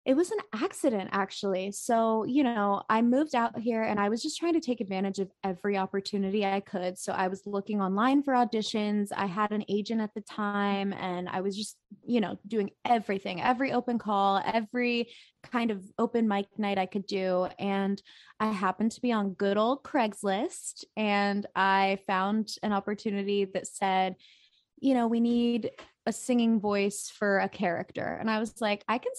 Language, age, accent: English, 20-39, American